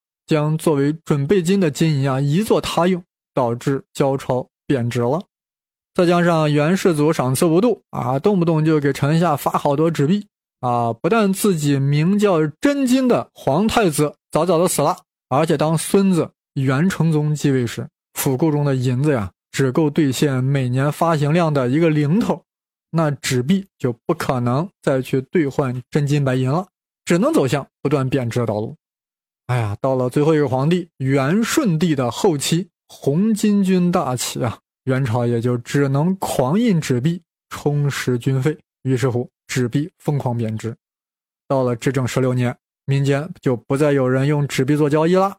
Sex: male